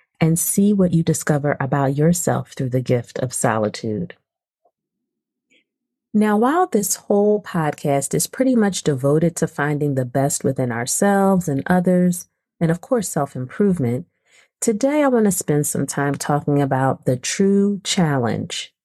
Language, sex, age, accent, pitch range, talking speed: English, female, 30-49, American, 135-180 Hz, 140 wpm